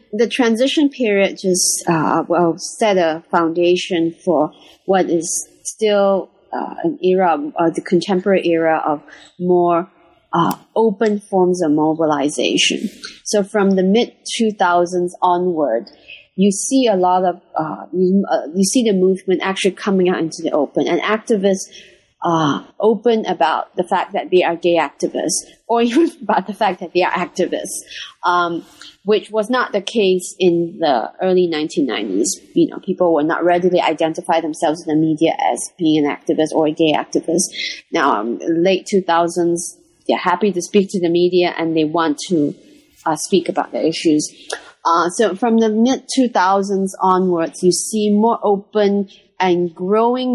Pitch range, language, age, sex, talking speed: 170-210 Hz, English, 30-49, female, 155 wpm